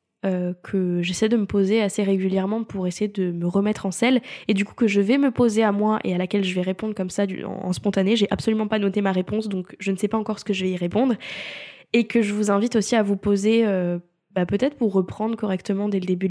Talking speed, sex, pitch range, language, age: 270 wpm, female, 185-220 Hz, French, 10-29